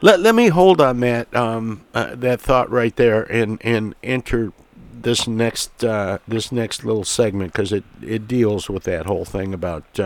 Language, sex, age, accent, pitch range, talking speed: English, male, 60-79, American, 90-115 Hz, 190 wpm